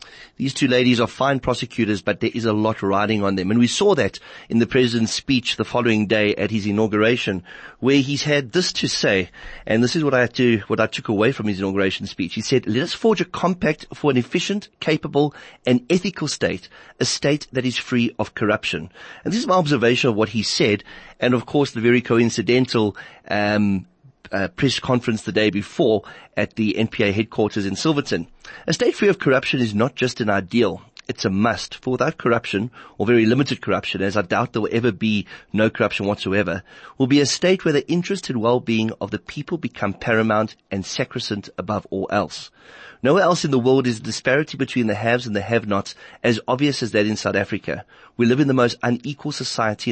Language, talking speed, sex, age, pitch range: English, 210 wpm, male, 30-49, 105-135 Hz